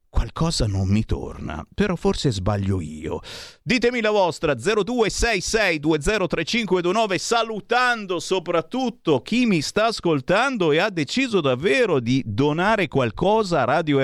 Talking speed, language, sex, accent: 120 wpm, Italian, male, native